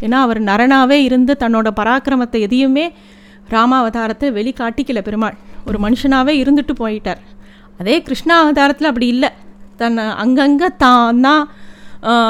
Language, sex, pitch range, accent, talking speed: Tamil, female, 220-275 Hz, native, 105 wpm